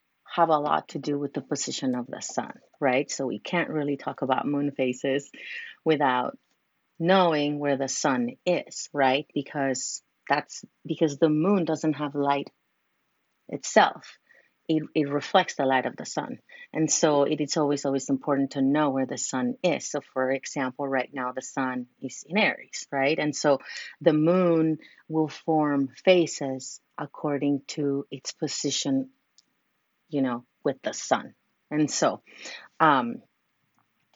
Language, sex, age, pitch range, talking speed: English, female, 30-49, 140-175 Hz, 155 wpm